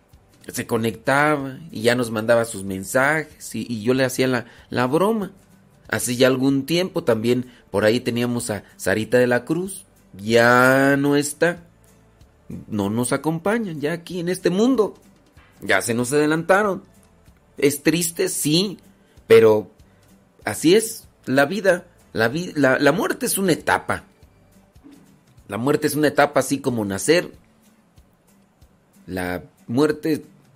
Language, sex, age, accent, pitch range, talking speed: Spanish, male, 40-59, Mexican, 120-170 Hz, 135 wpm